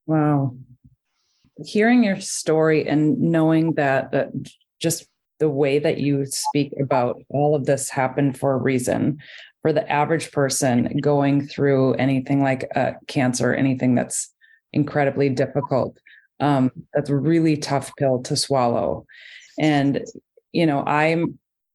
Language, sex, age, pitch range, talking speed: English, female, 30-49, 130-150 Hz, 130 wpm